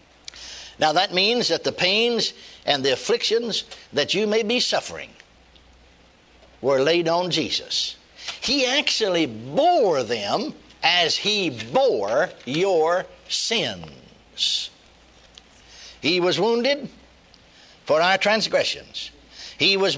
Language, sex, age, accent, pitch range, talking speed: English, male, 60-79, American, 170-265 Hz, 105 wpm